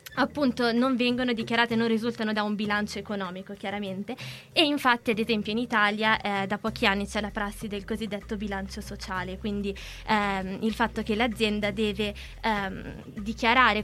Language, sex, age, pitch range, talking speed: Italian, female, 20-39, 205-230 Hz, 160 wpm